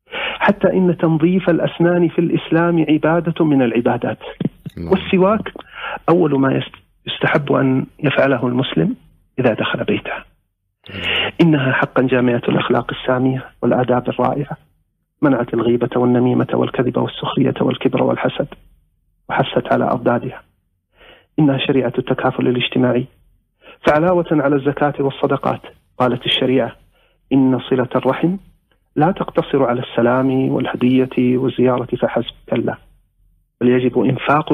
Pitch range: 125-155 Hz